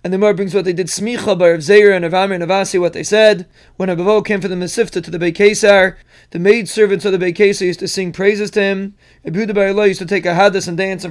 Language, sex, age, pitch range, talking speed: English, male, 20-39, 185-210 Hz, 255 wpm